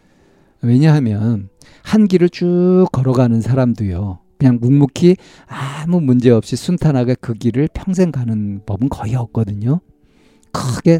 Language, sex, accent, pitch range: Korean, male, native, 110-145 Hz